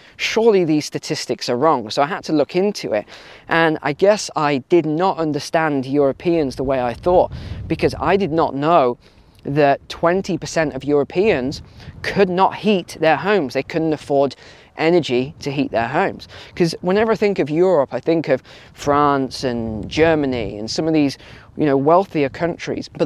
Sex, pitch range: male, 130-170 Hz